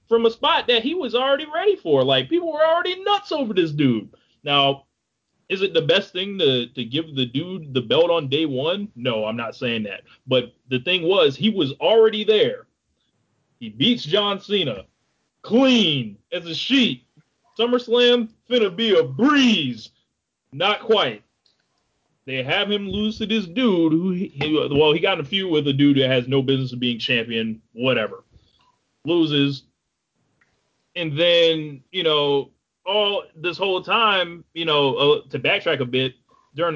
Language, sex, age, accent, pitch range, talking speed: English, male, 30-49, American, 135-215 Hz, 170 wpm